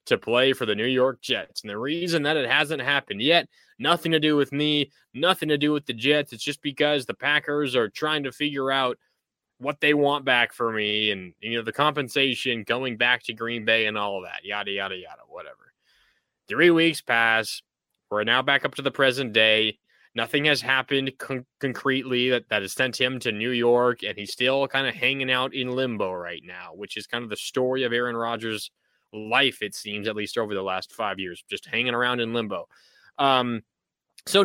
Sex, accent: male, American